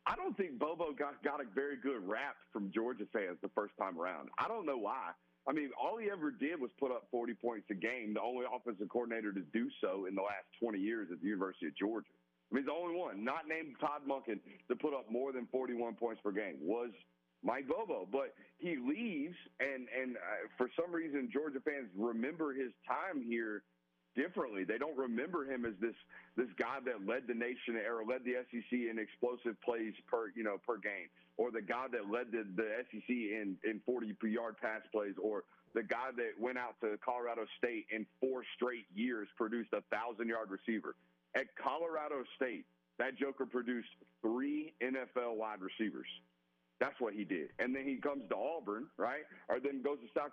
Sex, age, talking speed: male, 40-59, 205 wpm